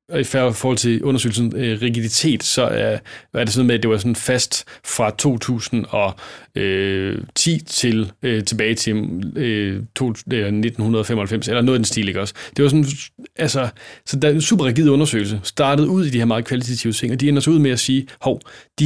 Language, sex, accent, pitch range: Danish, male, native, 110-130 Hz